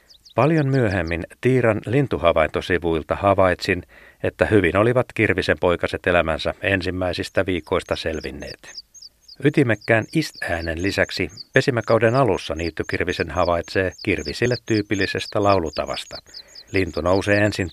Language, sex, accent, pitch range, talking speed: Finnish, male, native, 90-115 Hz, 90 wpm